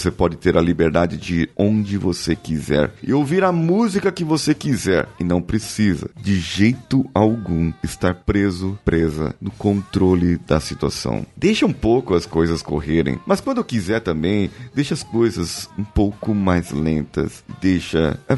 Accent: Brazilian